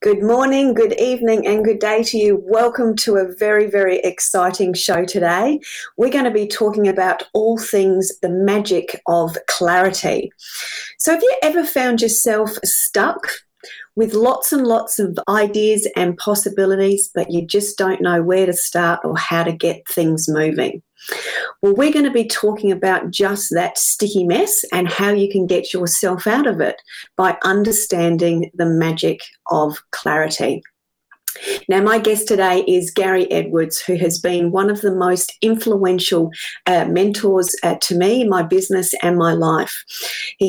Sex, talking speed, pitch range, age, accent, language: female, 165 wpm, 175-215 Hz, 40-59, Australian, English